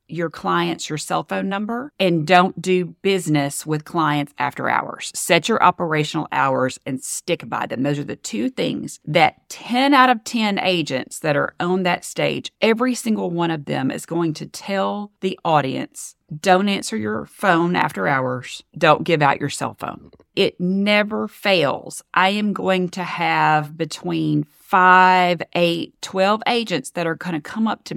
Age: 40-59